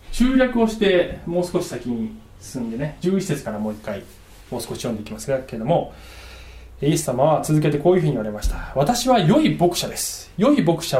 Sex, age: male, 20-39